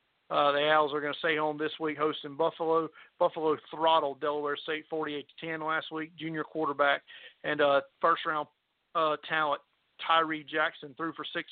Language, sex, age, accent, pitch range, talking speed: English, male, 50-69, American, 145-160 Hz, 165 wpm